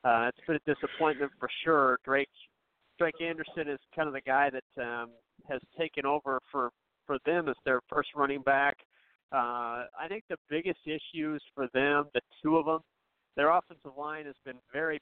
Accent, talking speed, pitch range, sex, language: American, 185 wpm, 130-150 Hz, male, English